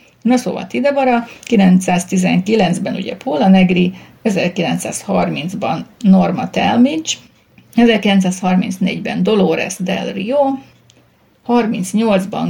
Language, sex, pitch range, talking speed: Hungarian, female, 185-220 Hz, 70 wpm